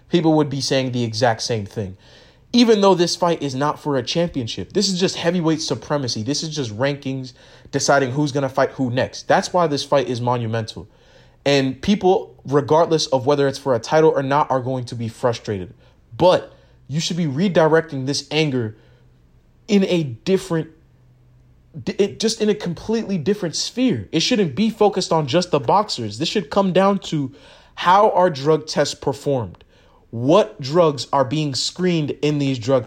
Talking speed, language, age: 175 wpm, English, 20-39